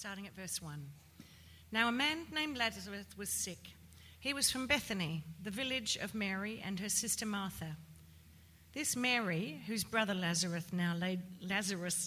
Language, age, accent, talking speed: English, 40-59, Australian, 155 wpm